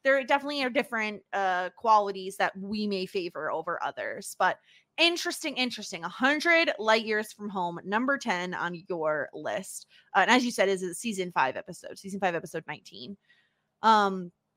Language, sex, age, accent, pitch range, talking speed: English, female, 20-39, American, 195-265 Hz, 170 wpm